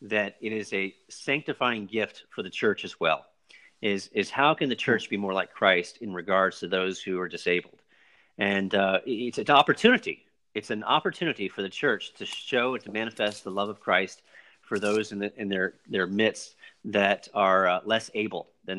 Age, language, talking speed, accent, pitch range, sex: 40-59, English, 200 wpm, American, 95-125 Hz, male